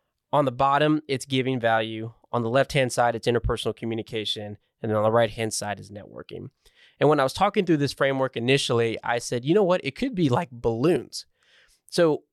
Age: 20-39